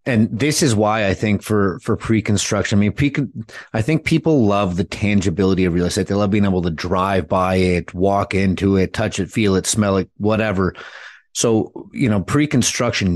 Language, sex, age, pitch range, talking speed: English, male, 30-49, 95-110 Hz, 195 wpm